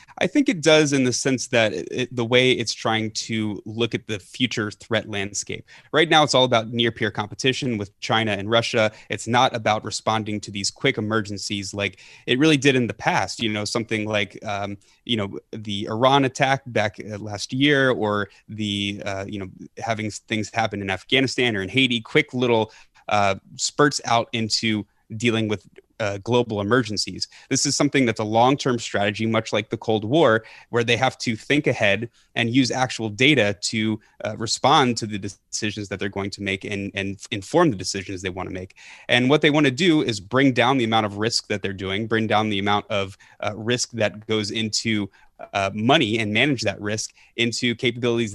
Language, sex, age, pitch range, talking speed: English, male, 20-39, 105-125 Hz, 195 wpm